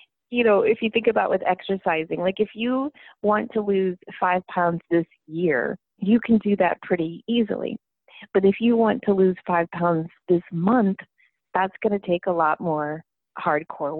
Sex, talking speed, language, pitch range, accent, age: female, 180 wpm, English, 155-190 Hz, American, 30-49